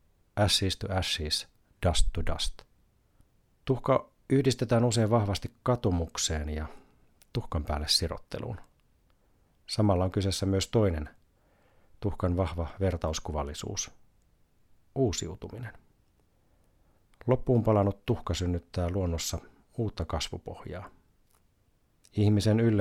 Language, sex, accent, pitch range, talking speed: Finnish, male, native, 85-105 Hz, 85 wpm